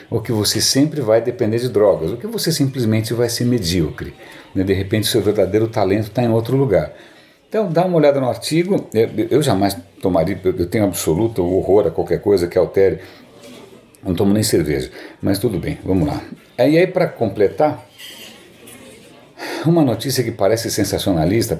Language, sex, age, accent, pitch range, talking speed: Portuguese, male, 60-79, Brazilian, 110-150 Hz, 175 wpm